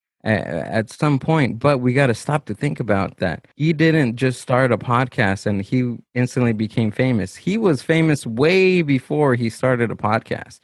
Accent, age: American, 20-39